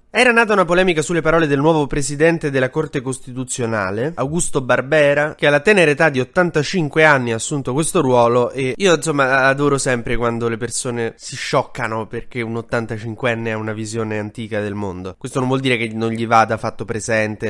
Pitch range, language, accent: 110-145 Hz, Italian, native